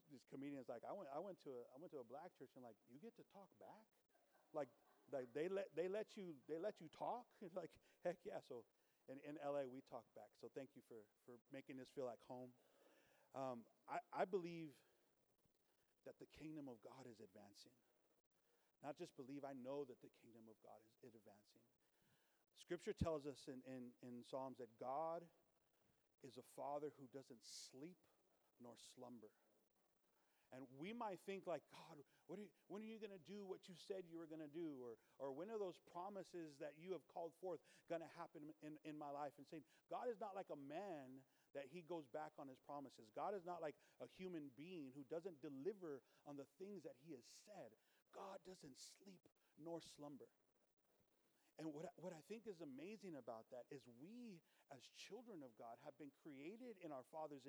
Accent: American